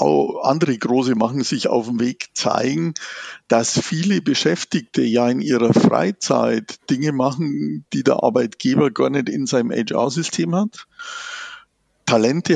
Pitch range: 115-150 Hz